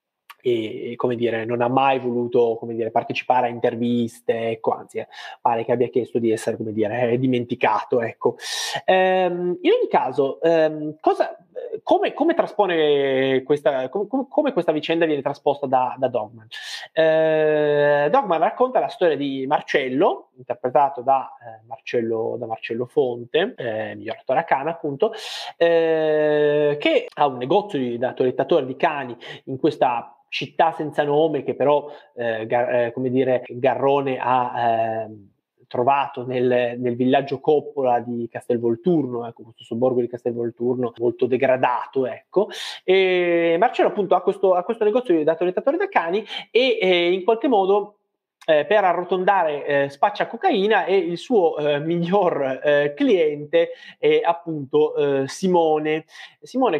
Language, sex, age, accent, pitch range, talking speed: Italian, male, 20-39, native, 125-180 Hz, 145 wpm